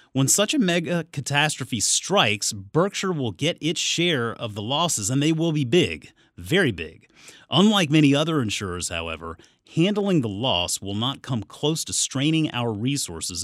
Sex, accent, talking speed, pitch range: male, American, 165 wpm, 100-140 Hz